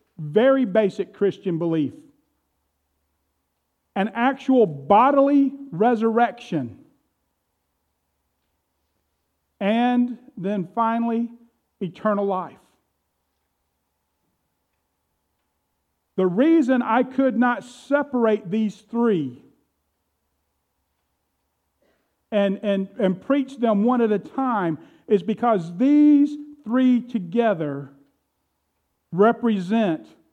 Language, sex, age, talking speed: English, male, 50-69, 70 wpm